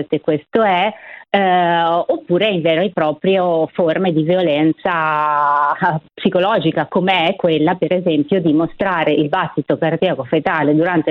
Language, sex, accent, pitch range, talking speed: Italian, female, native, 155-190 Hz, 130 wpm